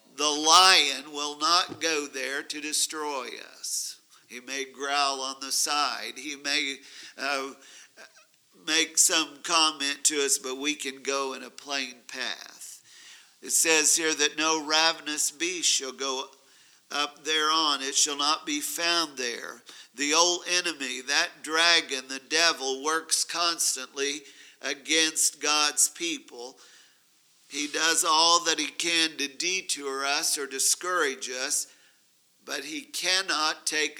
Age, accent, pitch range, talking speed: 50-69, American, 140-165 Hz, 135 wpm